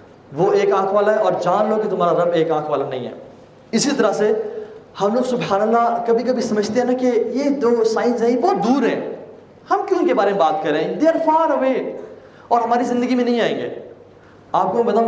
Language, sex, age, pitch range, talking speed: Urdu, male, 20-39, 185-270 Hz, 220 wpm